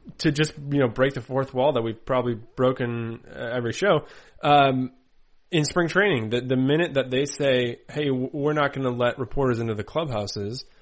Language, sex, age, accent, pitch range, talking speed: English, male, 20-39, American, 115-140 Hz, 190 wpm